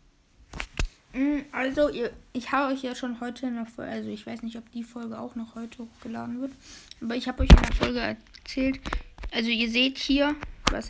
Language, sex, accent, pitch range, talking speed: German, female, German, 220-260 Hz, 185 wpm